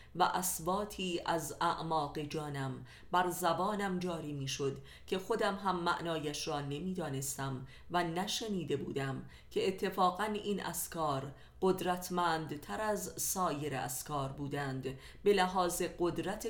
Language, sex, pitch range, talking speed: Persian, female, 140-180 Hz, 115 wpm